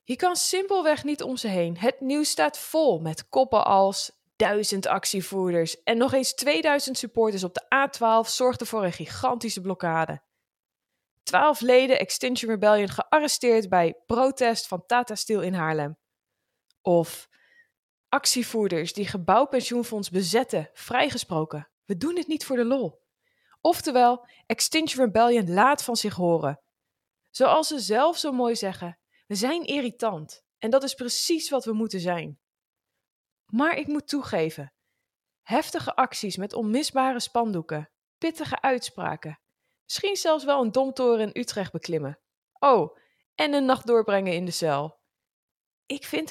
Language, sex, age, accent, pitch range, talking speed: Dutch, female, 20-39, Dutch, 185-270 Hz, 140 wpm